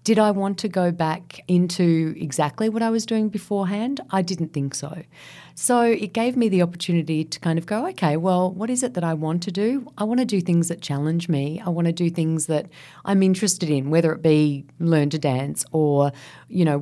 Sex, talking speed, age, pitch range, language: female, 225 wpm, 40-59, 145-185 Hz, English